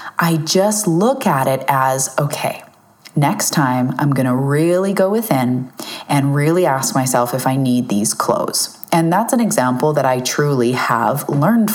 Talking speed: 170 wpm